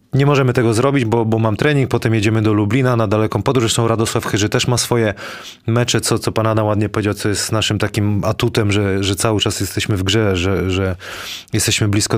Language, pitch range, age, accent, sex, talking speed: Polish, 105-125 Hz, 20-39, native, male, 210 wpm